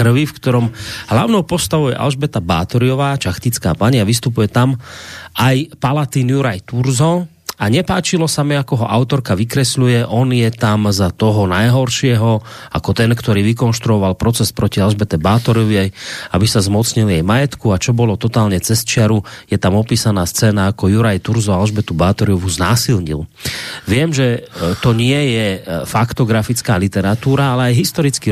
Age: 30-49